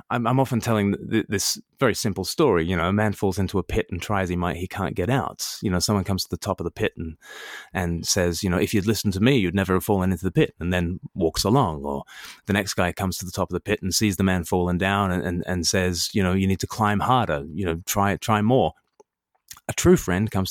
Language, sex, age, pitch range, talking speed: English, male, 20-39, 90-110 Hz, 270 wpm